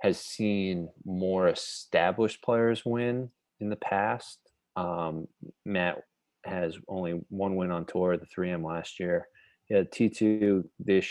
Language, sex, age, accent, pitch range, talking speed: English, male, 20-39, American, 90-110 Hz, 140 wpm